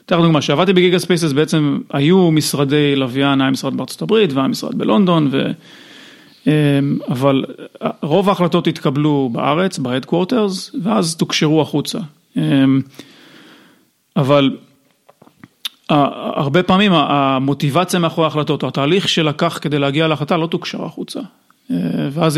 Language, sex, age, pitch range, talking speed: Hebrew, male, 40-59, 140-170 Hz, 115 wpm